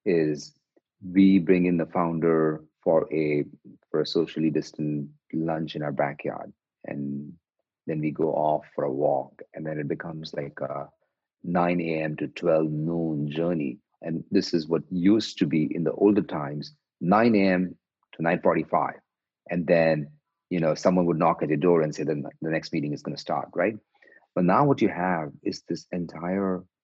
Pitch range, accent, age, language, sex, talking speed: 75-90 Hz, Indian, 40-59, English, male, 180 wpm